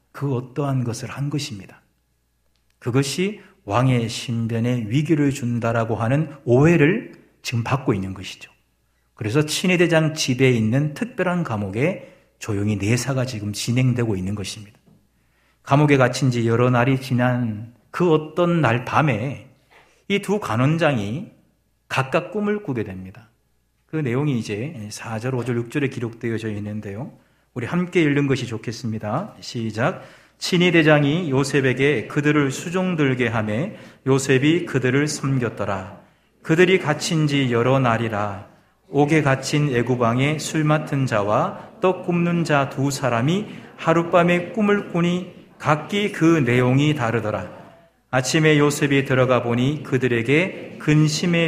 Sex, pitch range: male, 115-155 Hz